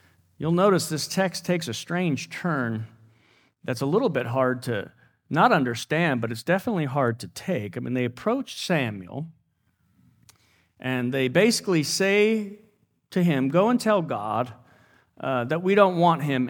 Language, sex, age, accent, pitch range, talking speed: English, male, 40-59, American, 115-165 Hz, 155 wpm